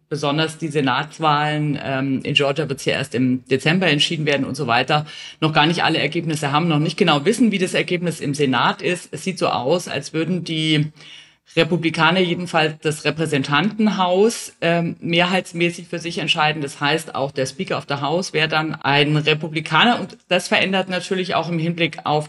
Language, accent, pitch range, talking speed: German, German, 145-185 Hz, 185 wpm